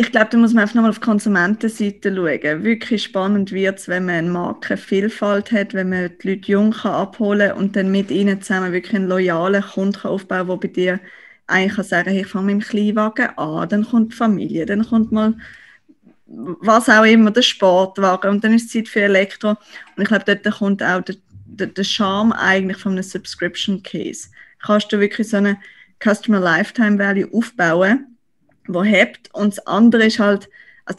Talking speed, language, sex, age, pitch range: 195 wpm, German, female, 20-39, 190-225 Hz